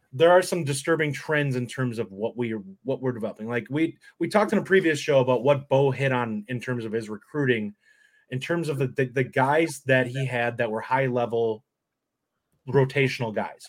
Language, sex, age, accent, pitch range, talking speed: English, male, 30-49, American, 120-145 Hz, 210 wpm